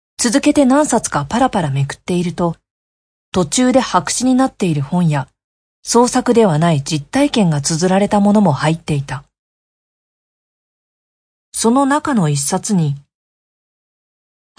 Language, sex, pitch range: Japanese, female, 150-230 Hz